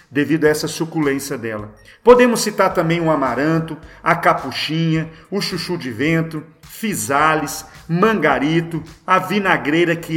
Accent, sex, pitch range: Brazilian, male, 145-175 Hz